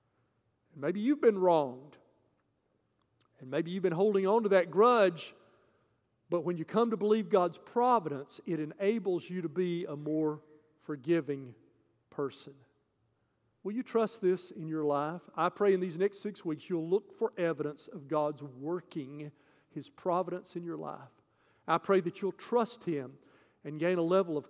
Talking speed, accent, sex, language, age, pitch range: 165 wpm, American, male, English, 50-69, 145-195 Hz